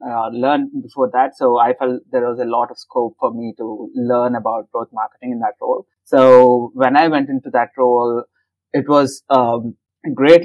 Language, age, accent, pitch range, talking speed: English, 20-39, Indian, 120-135 Hz, 200 wpm